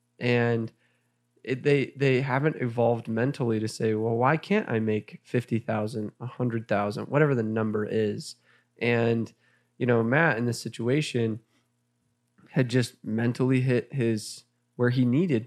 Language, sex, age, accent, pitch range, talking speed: English, male, 20-39, American, 110-135 Hz, 135 wpm